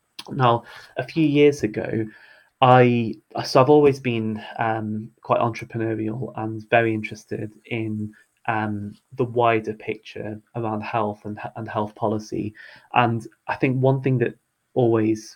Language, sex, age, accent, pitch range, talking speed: English, male, 20-39, British, 110-120 Hz, 135 wpm